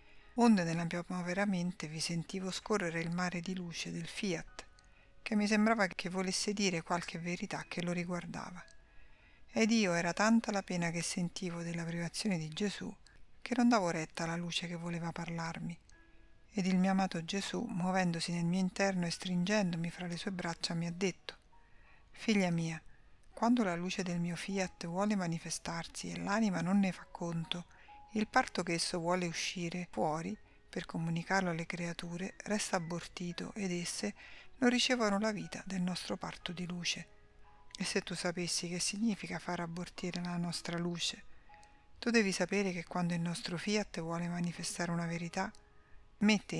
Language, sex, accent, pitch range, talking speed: Italian, female, native, 170-200 Hz, 165 wpm